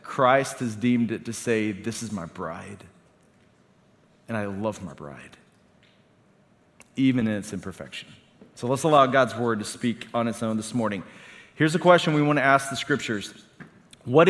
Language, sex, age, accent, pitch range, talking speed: English, male, 40-59, American, 130-180 Hz, 170 wpm